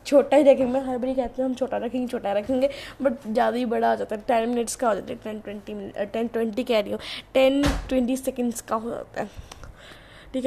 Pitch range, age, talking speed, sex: 235-260 Hz, 20-39, 230 wpm, female